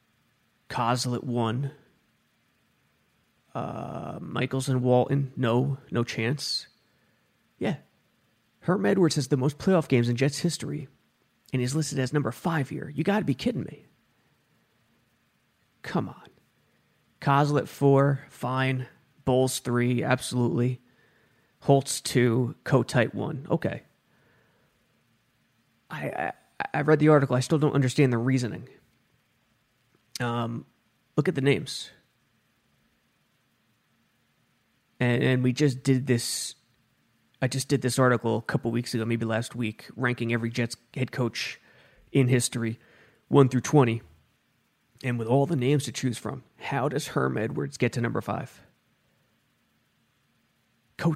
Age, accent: 30-49, American